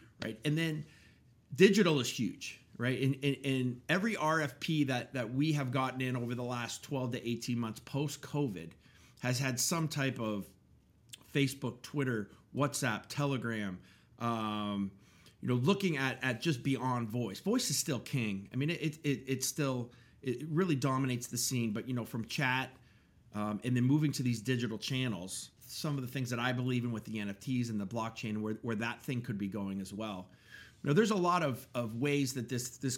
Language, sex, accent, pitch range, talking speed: English, male, American, 120-150 Hz, 190 wpm